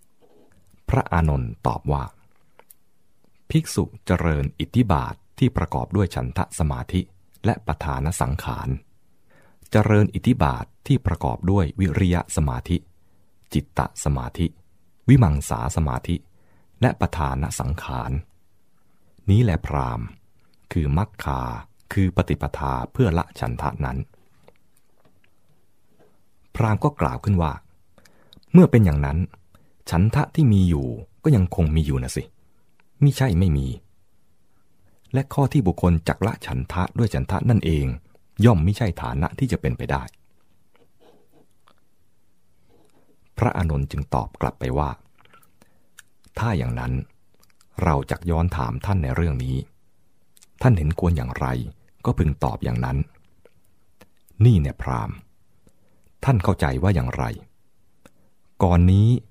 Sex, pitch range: male, 75-100 Hz